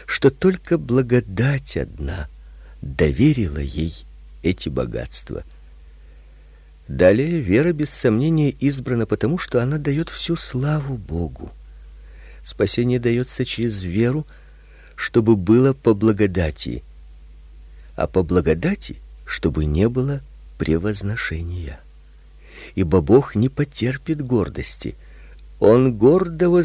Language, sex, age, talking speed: Russian, male, 50-69, 95 wpm